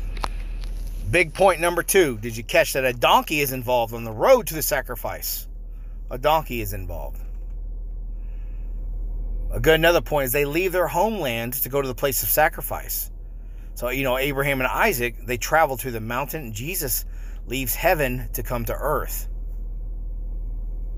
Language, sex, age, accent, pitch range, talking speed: English, male, 30-49, American, 105-155 Hz, 160 wpm